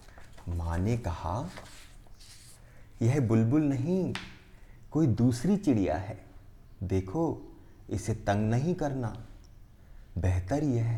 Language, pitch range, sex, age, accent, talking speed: Hindi, 95-125 Hz, male, 30-49, native, 100 wpm